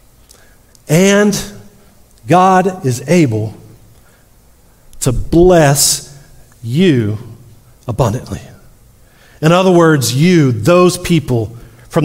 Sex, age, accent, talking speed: male, 40-59, American, 75 wpm